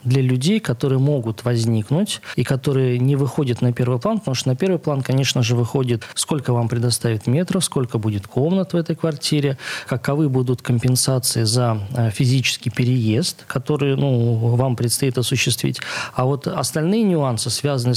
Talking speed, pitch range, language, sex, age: 155 wpm, 120-140 Hz, Russian, male, 20-39